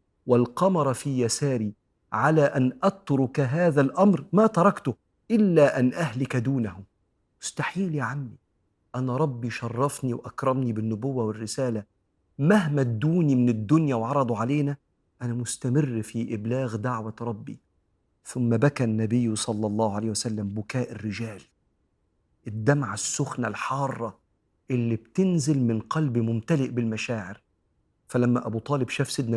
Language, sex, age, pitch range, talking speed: Arabic, male, 40-59, 110-135 Hz, 120 wpm